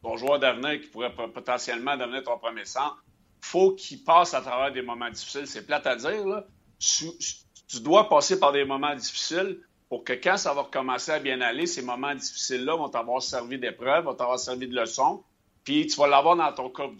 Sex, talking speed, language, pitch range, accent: male, 205 wpm, French, 120-155 Hz, Canadian